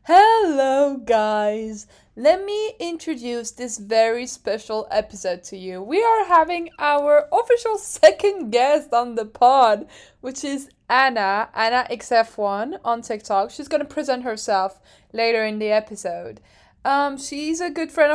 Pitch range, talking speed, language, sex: 230-300 Hz, 140 wpm, English, female